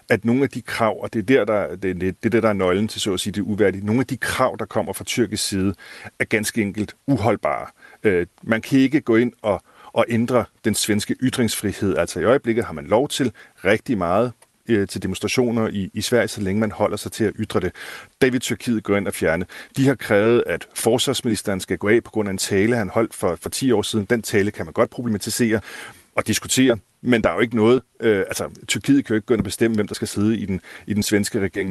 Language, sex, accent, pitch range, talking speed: Danish, male, native, 100-120 Hz, 245 wpm